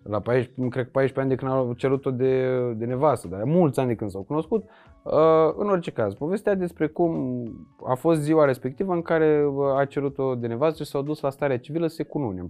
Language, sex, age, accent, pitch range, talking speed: Romanian, male, 20-39, native, 120-175 Hz, 205 wpm